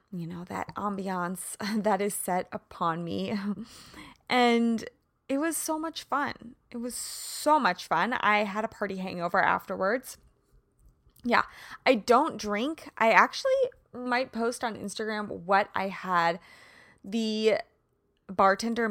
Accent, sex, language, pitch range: American, female, English, 190-255 Hz